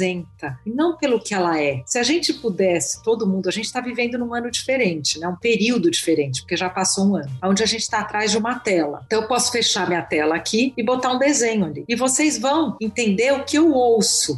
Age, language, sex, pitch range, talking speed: 40-59, Portuguese, female, 185-250 Hz, 235 wpm